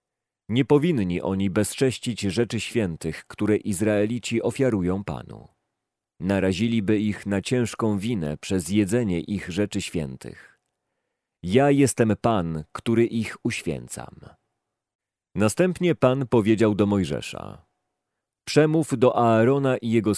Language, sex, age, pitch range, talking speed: Polish, male, 40-59, 100-125 Hz, 105 wpm